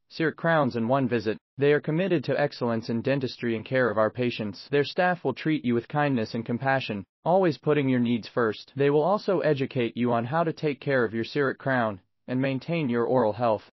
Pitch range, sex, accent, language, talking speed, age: 115-150 Hz, male, American, English, 220 wpm, 30-49